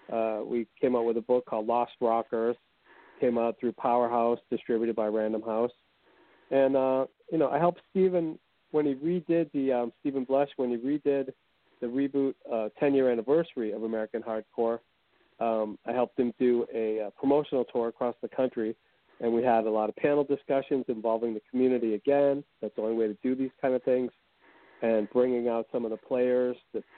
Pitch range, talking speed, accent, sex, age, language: 115-140 Hz, 190 wpm, American, male, 40-59, English